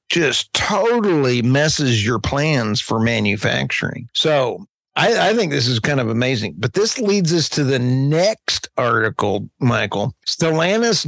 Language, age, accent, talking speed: English, 50-69, American, 140 wpm